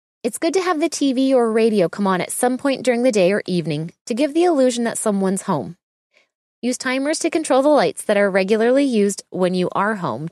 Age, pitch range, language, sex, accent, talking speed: 20-39, 195-265 Hz, English, female, American, 225 wpm